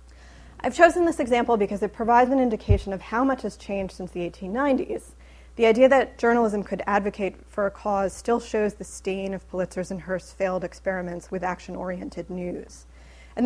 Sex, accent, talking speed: female, American, 180 wpm